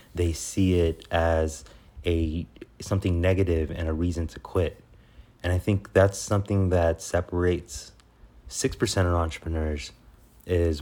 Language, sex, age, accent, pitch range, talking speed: English, male, 30-49, American, 85-95 Hz, 130 wpm